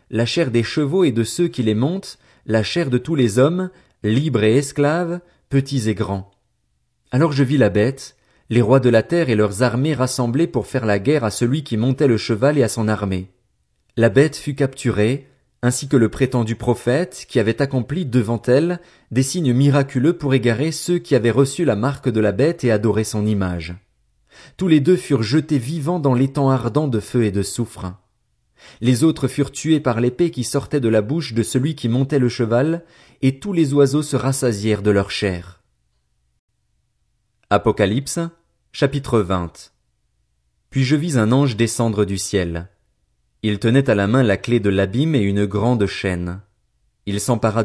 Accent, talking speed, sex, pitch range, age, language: French, 185 wpm, male, 105-140 Hz, 40-59, French